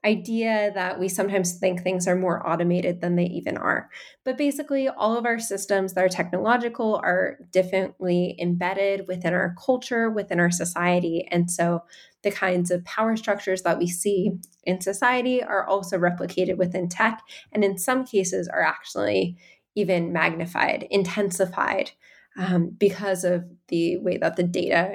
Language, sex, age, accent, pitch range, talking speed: English, female, 10-29, American, 180-225 Hz, 155 wpm